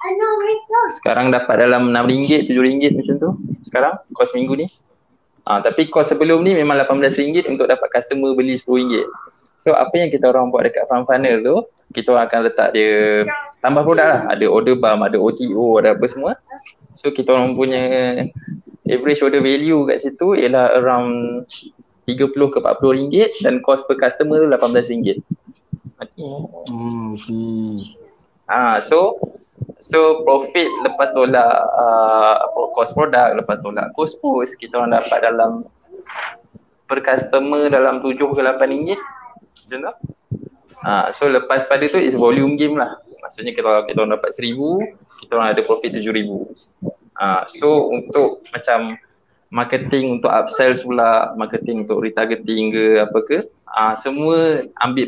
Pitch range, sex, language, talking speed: 120-155 Hz, male, Malay, 150 wpm